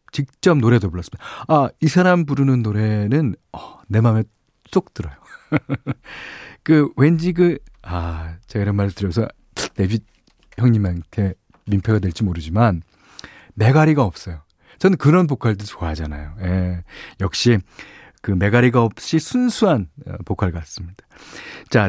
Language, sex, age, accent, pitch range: Korean, male, 40-59, native, 100-155 Hz